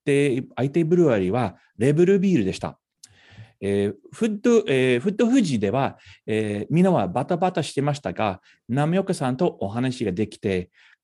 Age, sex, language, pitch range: 40-59, male, Japanese, 105-175 Hz